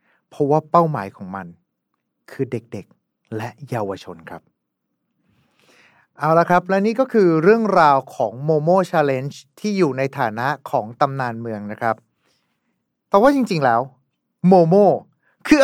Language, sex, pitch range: Thai, male, 125-175 Hz